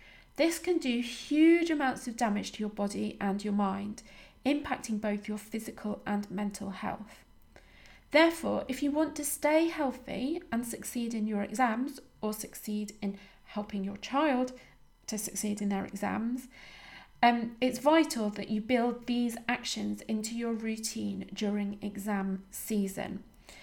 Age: 30-49